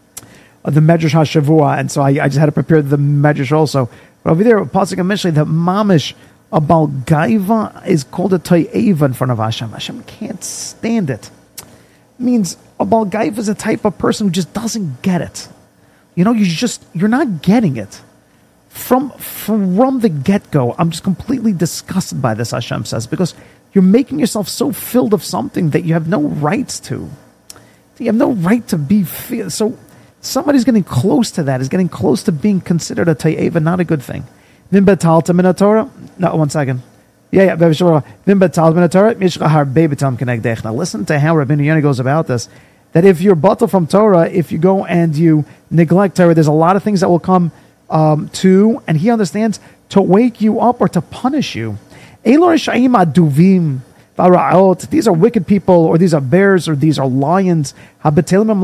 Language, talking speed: English, 180 wpm